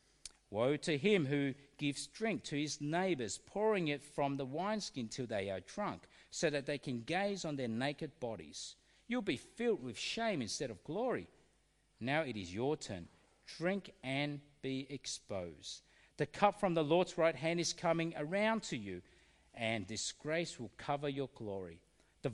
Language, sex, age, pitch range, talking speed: English, male, 50-69, 130-195 Hz, 170 wpm